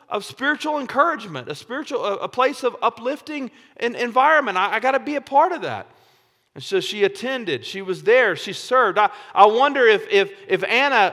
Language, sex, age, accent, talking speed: English, male, 40-59, American, 200 wpm